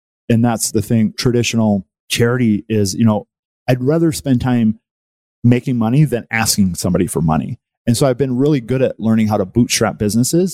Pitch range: 105-125 Hz